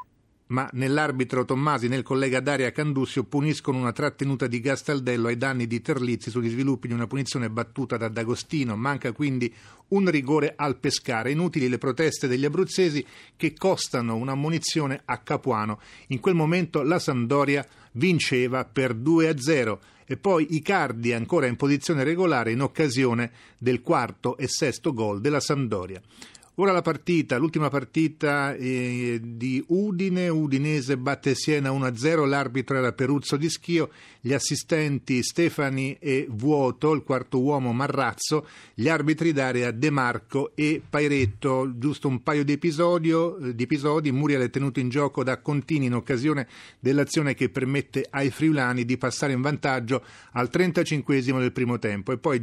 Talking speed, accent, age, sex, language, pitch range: 150 wpm, native, 40-59, male, Italian, 125-155 Hz